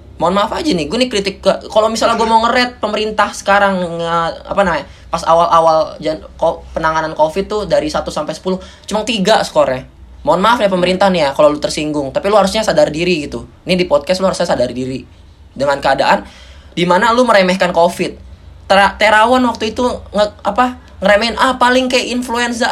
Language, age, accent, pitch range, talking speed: Indonesian, 20-39, native, 165-225 Hz, 180 wpm